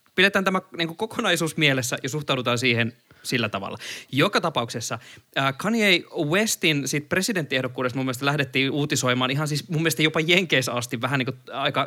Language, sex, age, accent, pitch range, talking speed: Finnish, male, 20-39, native, 125-160 Hz, 130 wpm